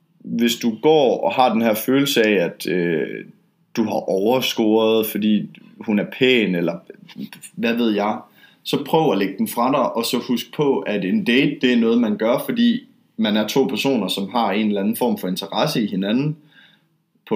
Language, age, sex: Danish, 20-39, male